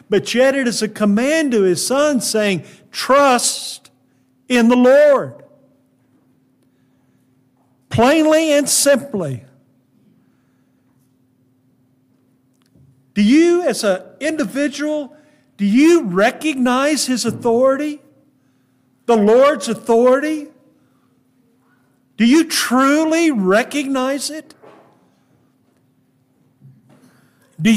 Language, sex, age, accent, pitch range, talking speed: English, male, 50-69, American, 185-285 Hz, 80 wpm